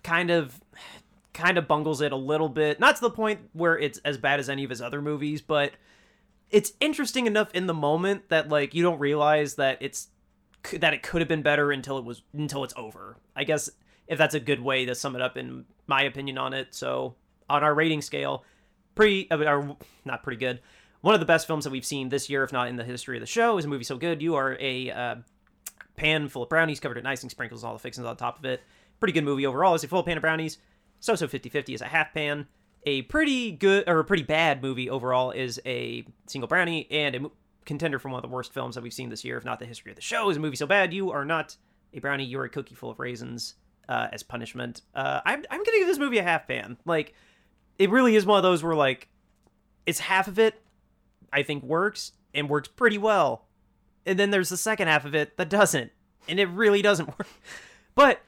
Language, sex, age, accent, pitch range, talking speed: English, male, 30-49, American, 130-170 Hz, 240 wpm